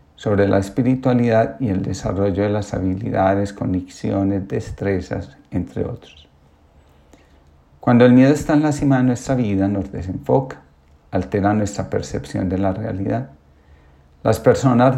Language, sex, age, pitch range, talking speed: Spanish, male, 50-69, 80-120 Hz, 130 wpm